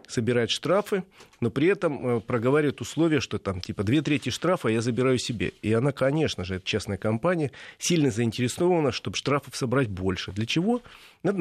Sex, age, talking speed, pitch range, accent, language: male, 40-59, 170 wpm, 110-140 Hz, native, Russian